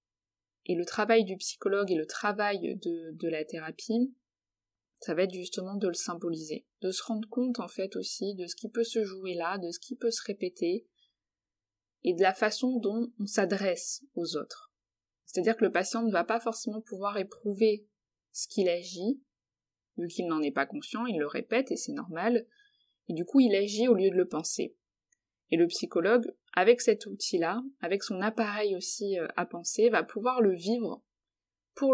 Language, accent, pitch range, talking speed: French, French, 170-230 Hz, 190 wpm